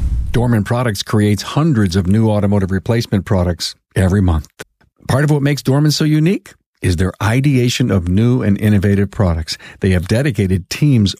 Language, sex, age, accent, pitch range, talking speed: English, male, 50-69, American, 100-135 Hz, 160 wpm